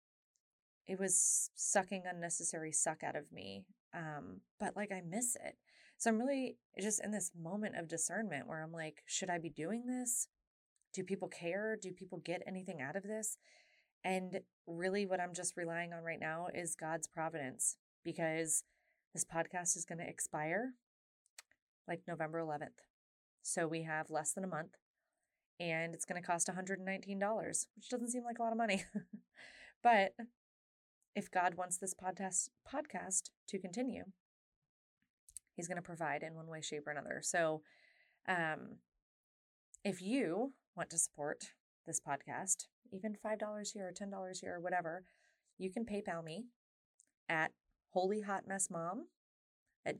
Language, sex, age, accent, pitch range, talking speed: English, female, 20-39, American, 165-210 Hz, 155 wpm